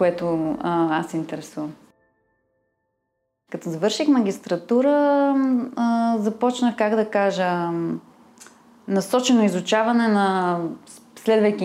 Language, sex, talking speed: Bulgarian, female, 80 wpm